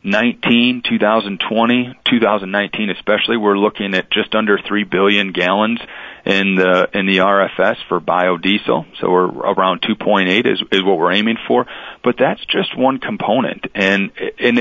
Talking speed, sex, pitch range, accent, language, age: 150 wpm, male, 100-115 Hz, American, English, 40-59